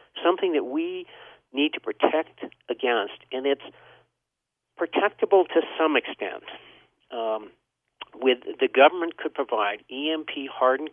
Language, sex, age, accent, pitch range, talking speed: English, male, 50-69, American, 120-180 Hz, 110 wpm